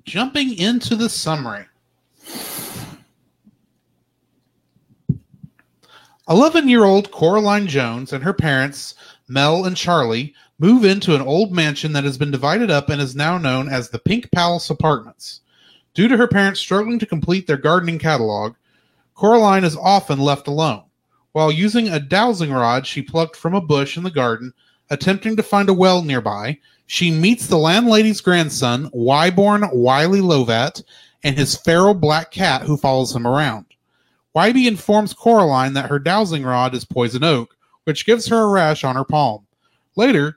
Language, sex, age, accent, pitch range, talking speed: English, male, 30-49, American, 140-200 Hz, 155 wpm